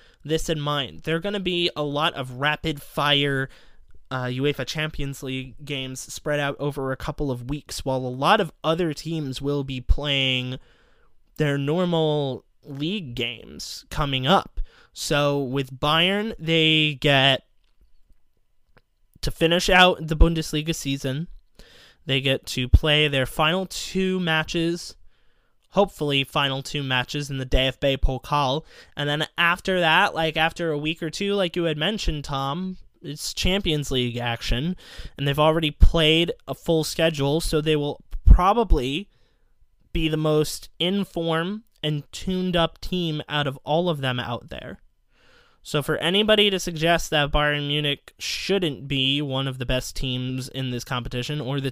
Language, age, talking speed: English, 20-39, 150 wpm